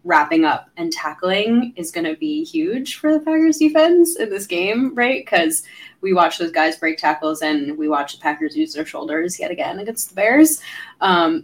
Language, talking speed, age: English, 195 wpm, 20-39